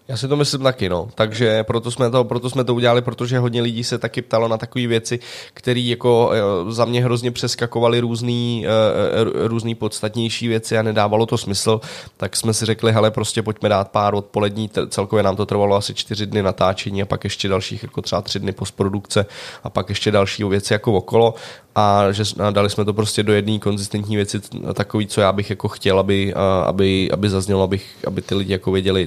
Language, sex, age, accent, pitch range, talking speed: Czech, male, 20-39, native, 95-110 Hz, 200 wpm